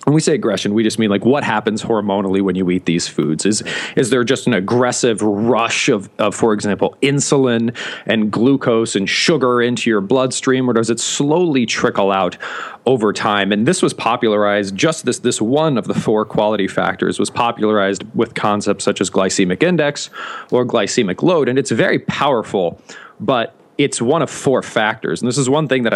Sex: male